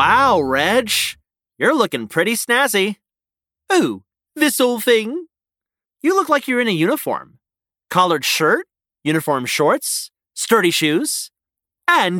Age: 30-49